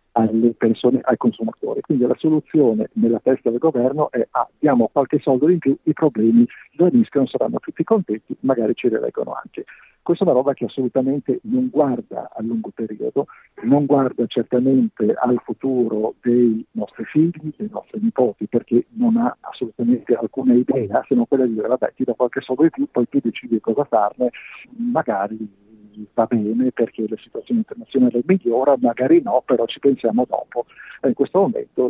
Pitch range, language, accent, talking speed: 120-165 Hz, Italian, native, 175 wpm